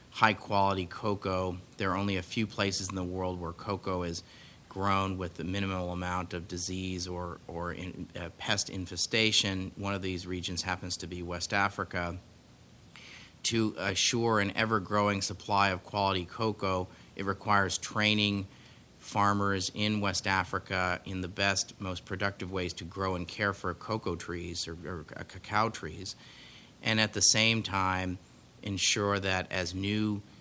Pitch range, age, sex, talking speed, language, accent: 90-100 Hz, 30-49, male, 150 wpm, English, American